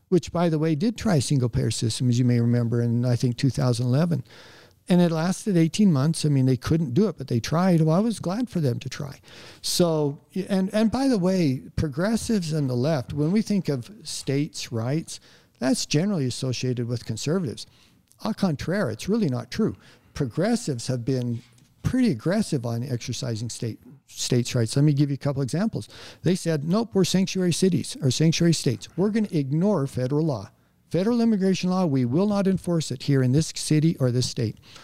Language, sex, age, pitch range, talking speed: English, male, 60-79, 130-175 Hz, 195 wpm